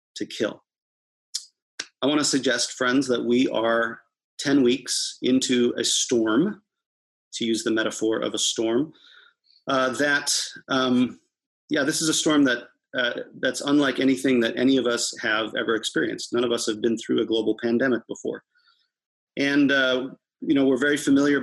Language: English